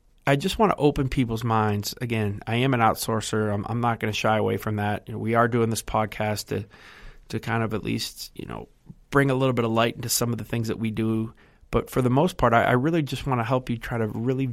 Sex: male